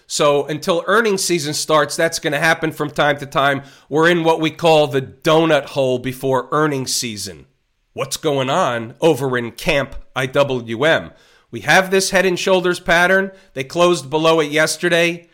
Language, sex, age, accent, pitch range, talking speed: English, male, 40-59, American, 140-170 Hz, 170 wpm